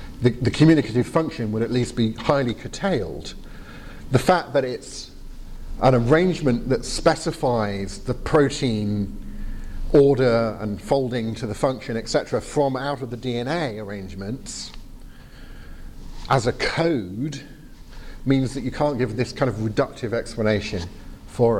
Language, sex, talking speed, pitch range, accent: English, male, 130 wpm, 110-140 Hz, British